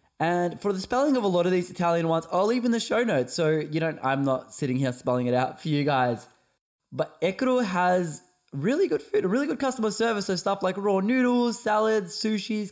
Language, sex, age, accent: English, male, 10-29, Australian